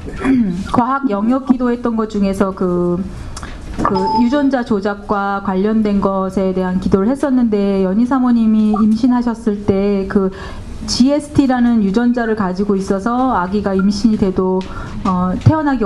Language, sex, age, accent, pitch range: Korean, female, 30-49, native, 195-240 Hz